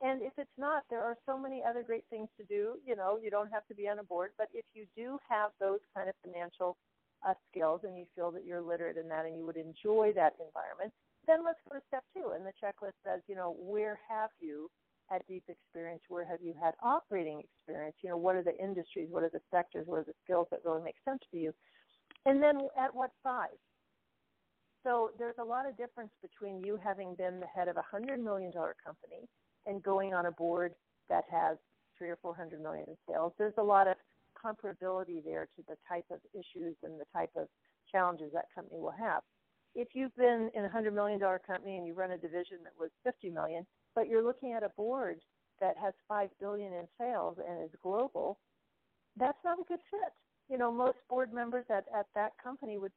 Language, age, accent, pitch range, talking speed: English, 50-69, American, 175-235 Hz, 220 wpm